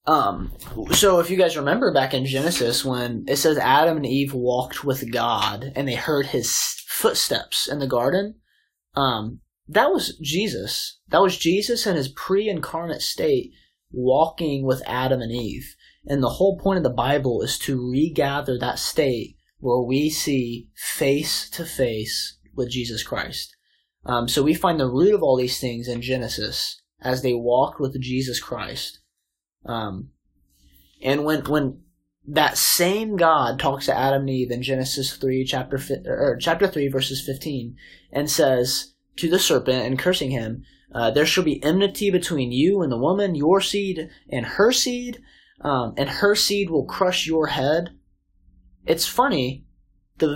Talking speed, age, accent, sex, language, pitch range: 160 wpm, 20-39, American, male, English, 125-165 Hz